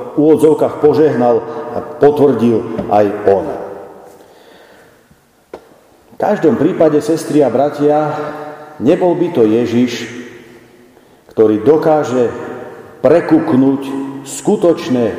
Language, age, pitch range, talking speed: Slovak, 40-59, 120-175 Hz, 80 wpm